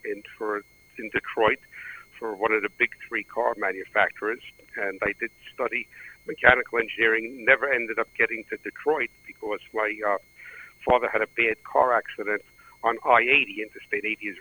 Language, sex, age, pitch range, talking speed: English, male, 60-79, 110-135 Hz, 160 wpm